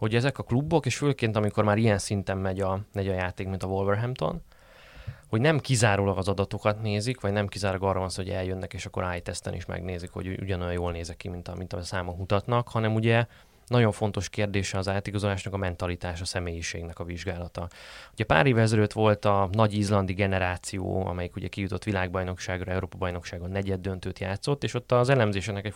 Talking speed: 185 wpm